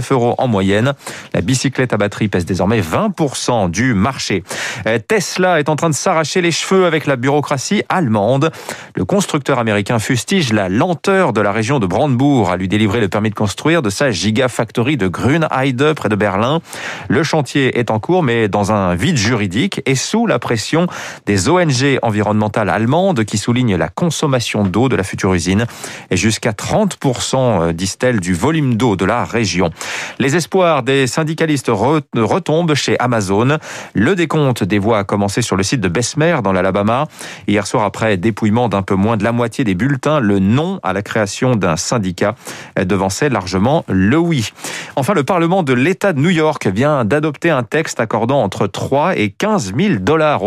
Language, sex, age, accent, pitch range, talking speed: French, male, 40-59, French, 105-150 Hz, 175 wpm